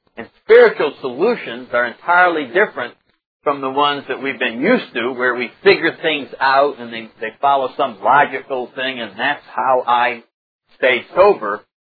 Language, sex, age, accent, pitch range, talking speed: English, male, 50-69, American, 120-145 Hz, 160 wpm